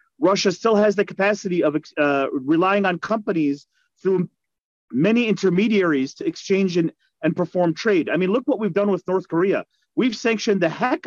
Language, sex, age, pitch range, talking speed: Arabic, male, 30-49, 170-225 Hz, 170 wpm